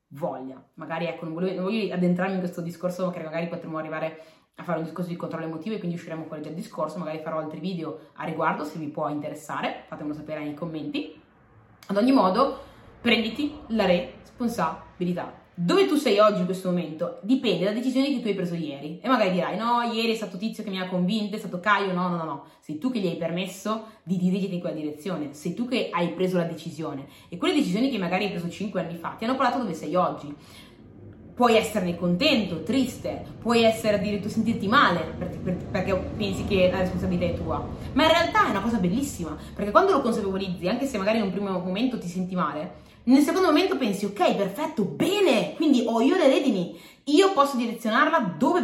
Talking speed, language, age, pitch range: 210 wpm, Italian, 20-39, 165-230 Hz